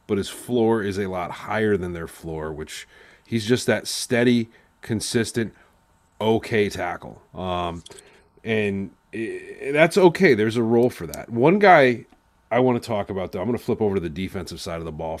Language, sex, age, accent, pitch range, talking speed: English, male, 30-49, American, 100-125 Hz, 190 wpm